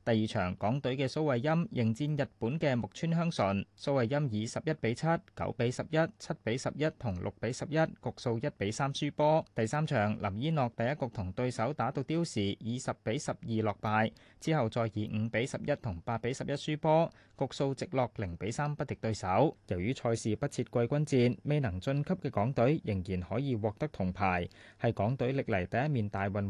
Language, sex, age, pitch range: Chinese, male, 20-39, 105-140 Hz